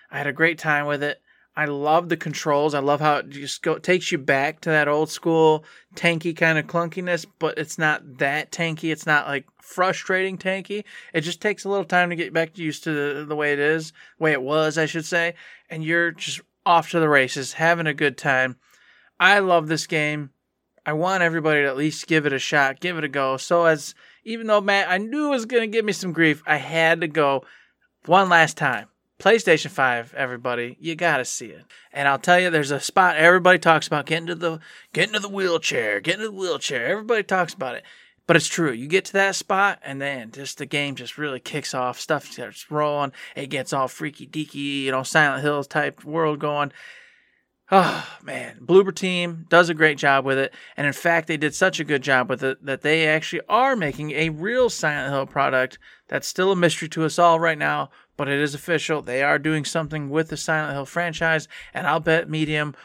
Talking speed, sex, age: 220 wpm, male, 20-39